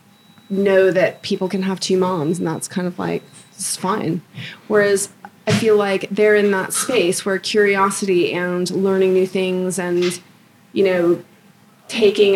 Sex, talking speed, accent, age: female, 155 wpm, American, 30-49